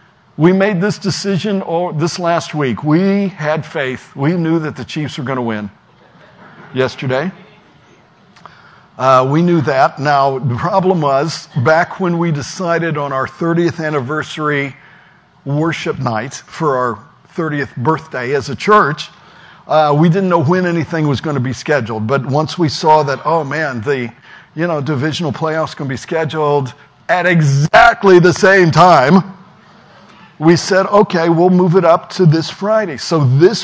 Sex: male